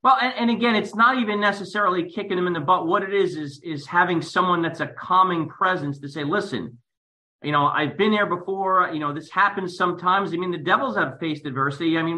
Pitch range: 155-205 Hz